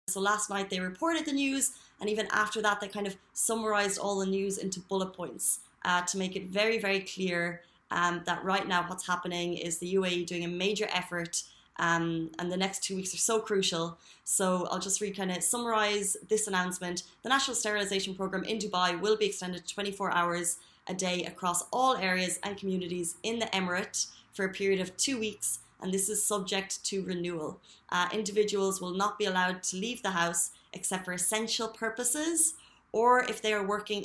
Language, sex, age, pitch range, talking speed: Arabic, female, 20-39, 180-210 Hz, 195 wpm